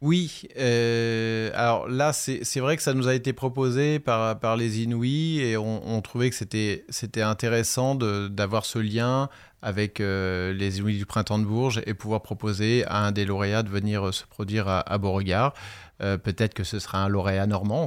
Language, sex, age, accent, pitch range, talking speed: French, male, 30-49, French, 105-120 Hz, 200 wpm